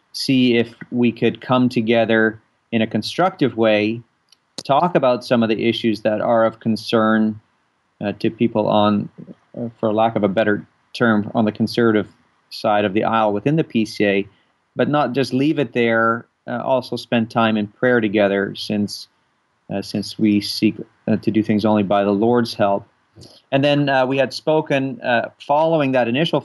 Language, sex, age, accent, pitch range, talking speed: English, male, 40-59, American, 110-125 Hz, 175 wpm